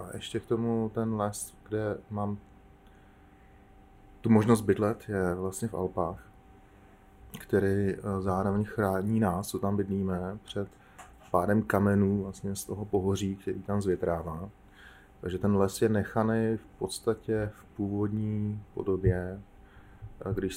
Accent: native